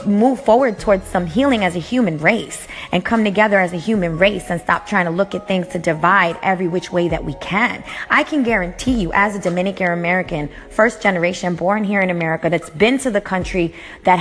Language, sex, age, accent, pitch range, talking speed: English, female, 20-39, American, 180-245 Hz, 215 wpm